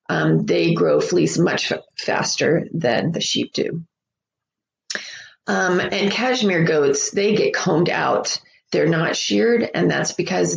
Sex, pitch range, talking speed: female, 165-215 Hz, 140 wpm